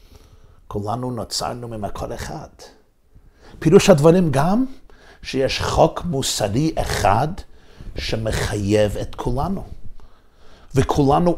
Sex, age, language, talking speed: male, 50-69, Hebrew, 80 wpm